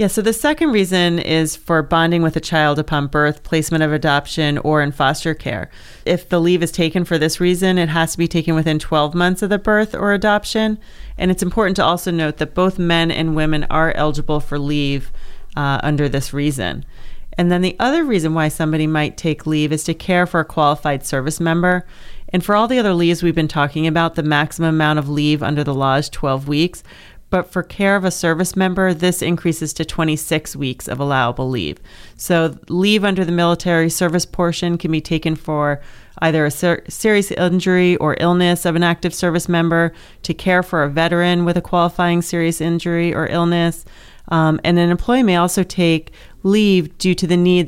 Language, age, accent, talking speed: English, 30-49, American, 200 wpm